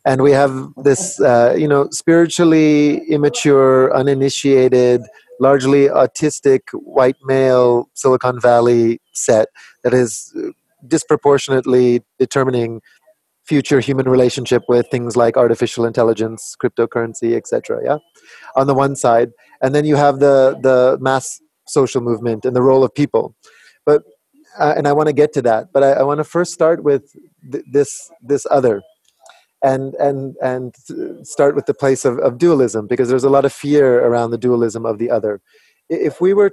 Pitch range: 125-150 Hz